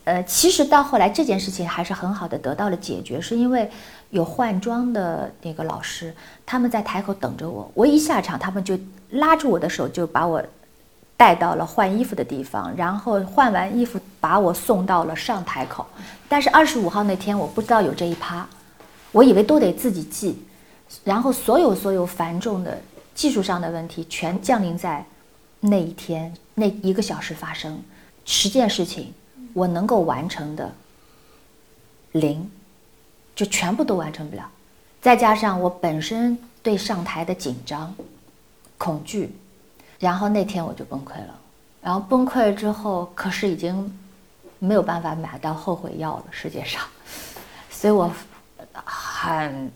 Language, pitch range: Chinese, 170-220 Hz